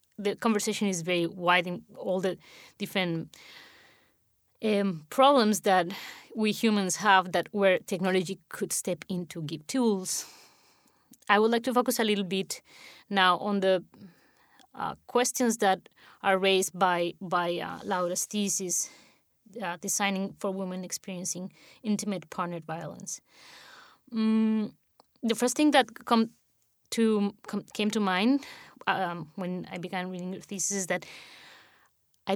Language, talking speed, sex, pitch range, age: English, 135 wpm, female, 180-215 Hz, 20-39